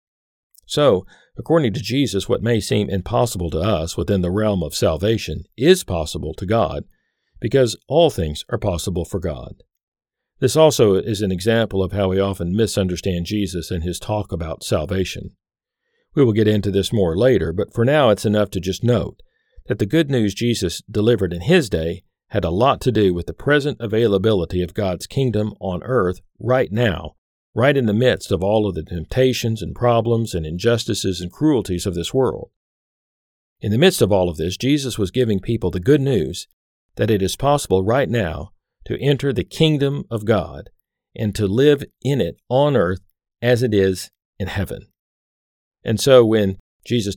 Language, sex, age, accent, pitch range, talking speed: English, male, 50-69, American, 90-120 Hz, 180 wpm